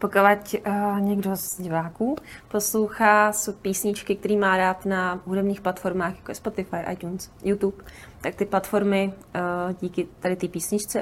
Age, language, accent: 20-39, Czech, native